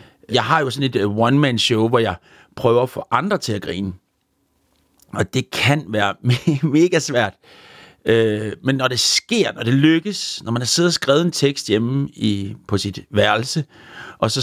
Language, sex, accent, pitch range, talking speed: Danish, male, native, 100-145 Hz, 185 wpm